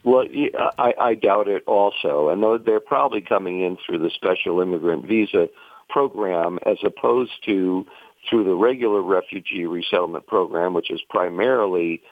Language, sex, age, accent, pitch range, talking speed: English, male, 50-69, American, 95-150 Hz, 140 wpm